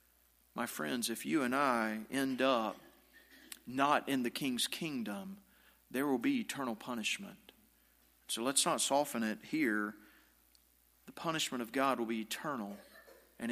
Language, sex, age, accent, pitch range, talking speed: English, male, 40-59, American, 105-135 Hz, 140 wpm